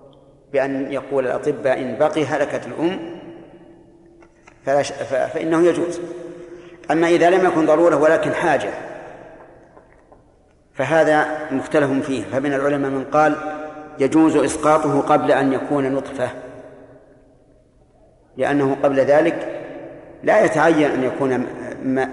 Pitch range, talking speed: 135-160 Hz, 105 wpm